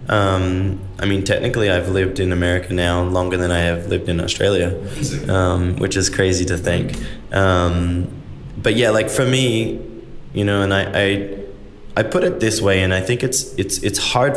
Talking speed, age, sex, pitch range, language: 190 wpm, 20-39, male, 90-110 Hz, English